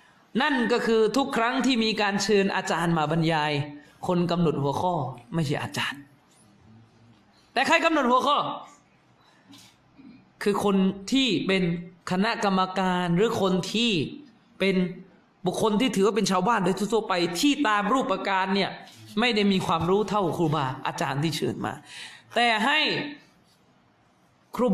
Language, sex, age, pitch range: Thai, male, 20-39, 190-270 Hz